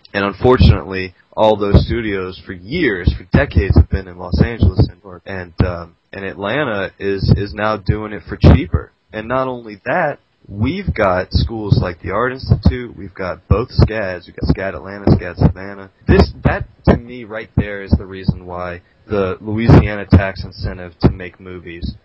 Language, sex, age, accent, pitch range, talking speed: English, male, 30-49, American, 90-110 Hz, 170 wpm